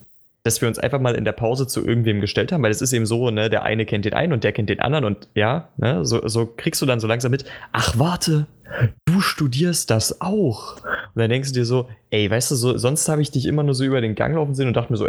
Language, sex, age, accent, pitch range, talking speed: German, male, 20-39, German, 110-135 Hz, 280 wpm